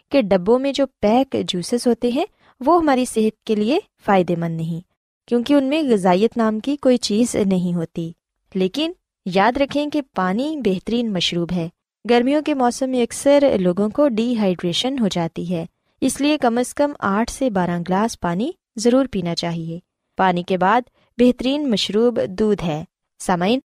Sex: female